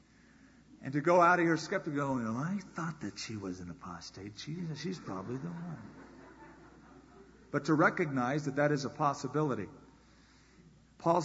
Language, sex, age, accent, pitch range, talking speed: English, male, 50-69, American, 135-180 Hz, 155 wpm